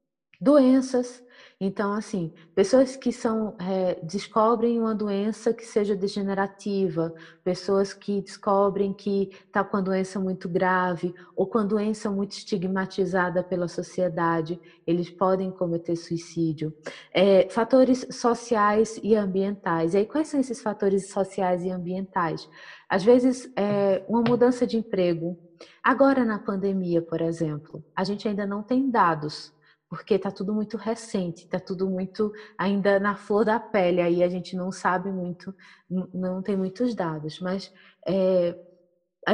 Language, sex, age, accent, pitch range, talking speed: Portuguese, female, 20-39, Brazilian, 180-215 Hz, 145 wpm